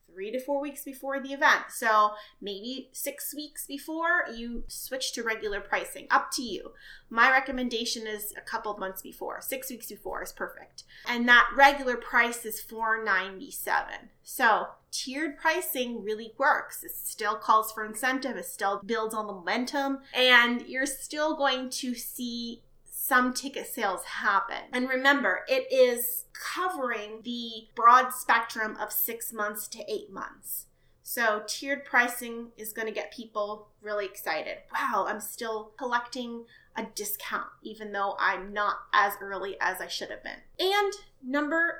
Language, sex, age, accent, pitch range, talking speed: English, female, 30-49, American, 220-280 Hz, 155 wpm